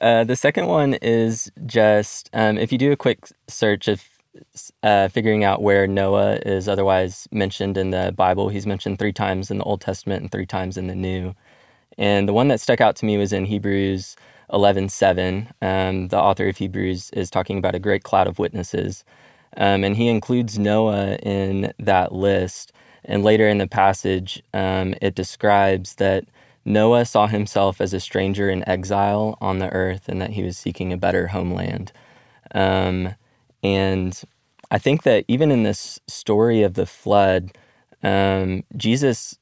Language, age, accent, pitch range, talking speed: English, 20-39, American, 95-105 Hz, 170 wpm